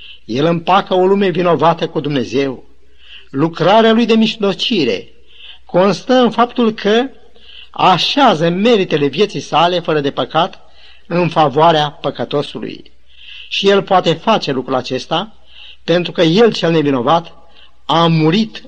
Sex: male